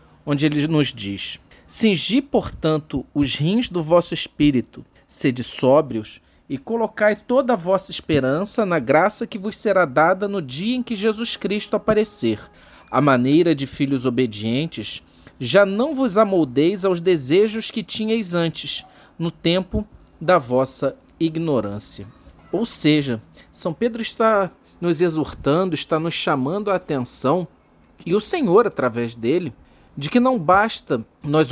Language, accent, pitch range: Portuguese, Brazilian, 150-225 Hz